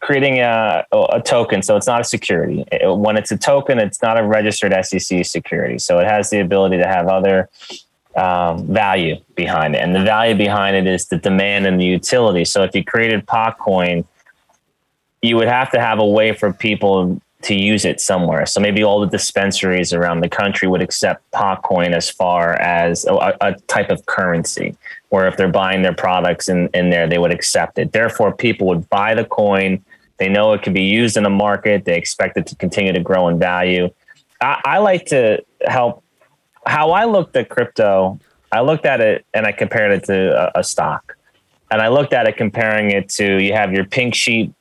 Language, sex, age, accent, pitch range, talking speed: English, male, 30-49, American, 90-105 Hz, 205 wpm